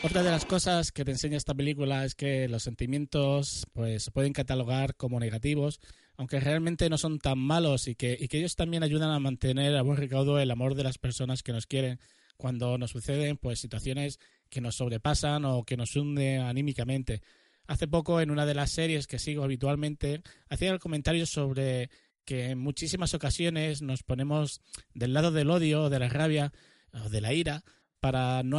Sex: male